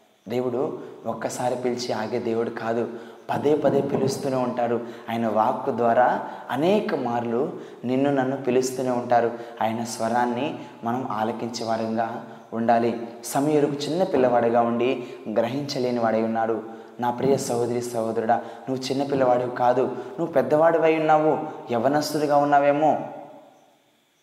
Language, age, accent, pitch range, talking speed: Telugu, 20-39, native, 115-140 Hz, 105 wpm